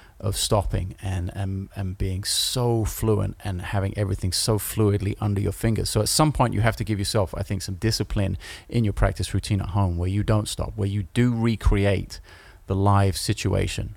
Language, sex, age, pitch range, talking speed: English, male, 30-49, 95-110 Hz, 200 wpm